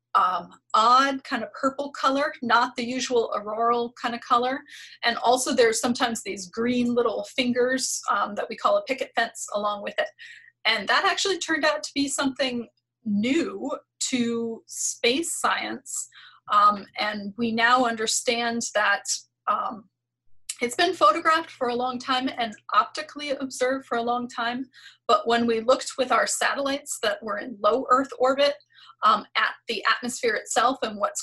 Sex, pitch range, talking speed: female, 220-270 Hz, 160 wpm